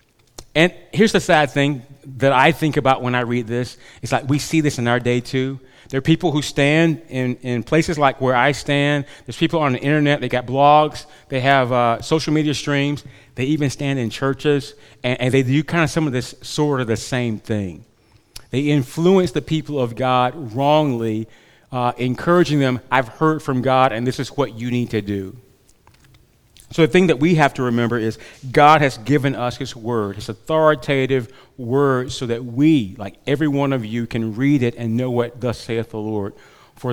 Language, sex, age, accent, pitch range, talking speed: English, male, 30-49, American, 120-150 Hz, 205 wpm